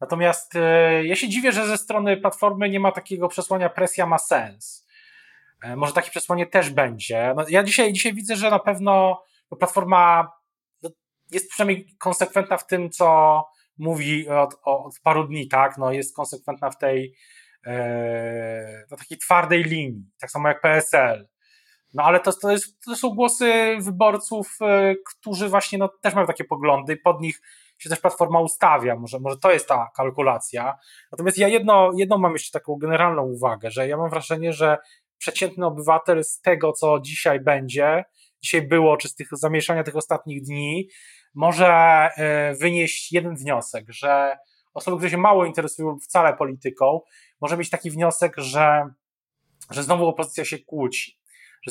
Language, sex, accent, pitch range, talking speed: Polish, male, native, 145-185 Hz, 155 wpm